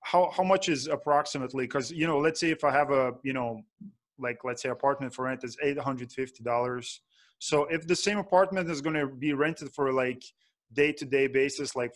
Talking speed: 210 wpm